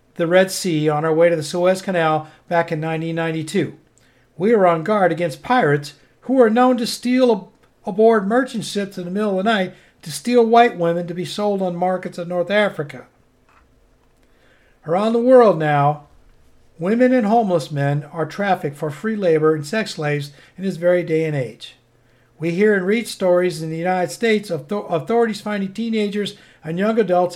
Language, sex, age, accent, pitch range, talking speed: English, male, 50-69, American, 160-205 Hz, 180 wpm